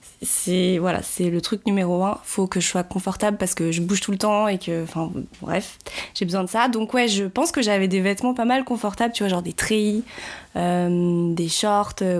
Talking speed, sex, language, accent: 230 wpm, female, French, French